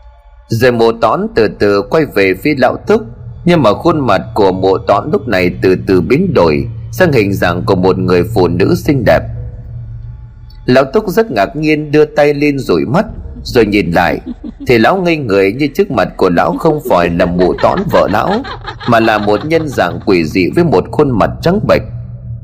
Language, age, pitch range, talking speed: Vietnamese, 30-49, 95-150 Hz, 200 wpm